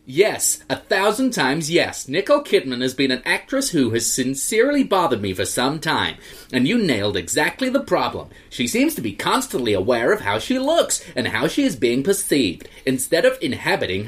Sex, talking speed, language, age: male, 190 wpm, English, 30-49